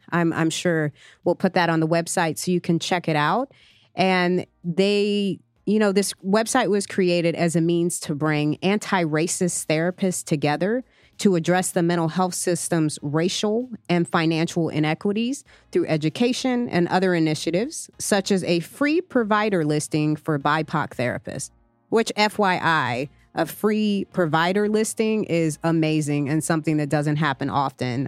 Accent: American